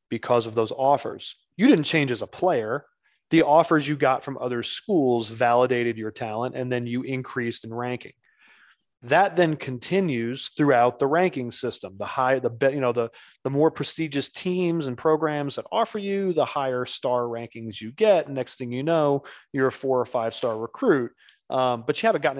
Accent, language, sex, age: American, English, male, 30-49